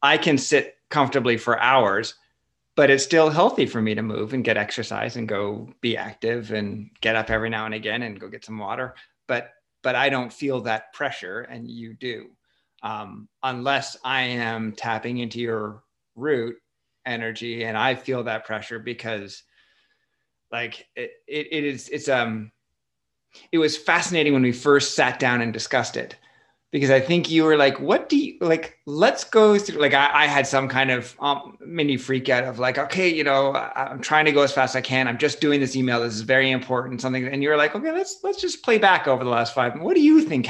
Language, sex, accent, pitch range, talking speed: English, male, American, 120-150 Hz, 215 wpm